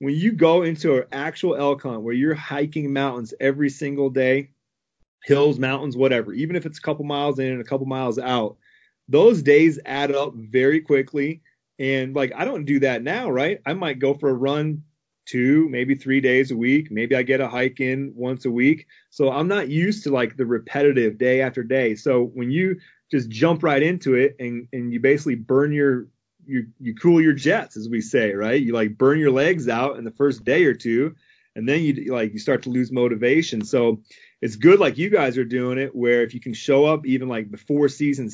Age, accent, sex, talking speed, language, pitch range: 30-49, American, male, 220 wpm, English, 120-140 Hz